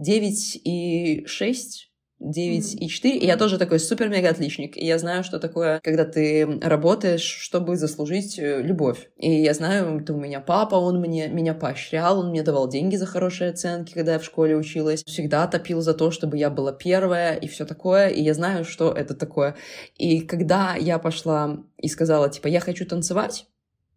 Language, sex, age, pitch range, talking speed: Russian, female, 20-39, 160-200 Hz, 165 wpm